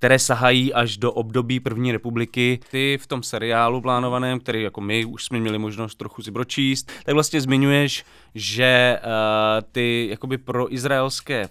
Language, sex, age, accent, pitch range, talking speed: English, male, 20-39, Czech, 110-130 Hz, 155 wpm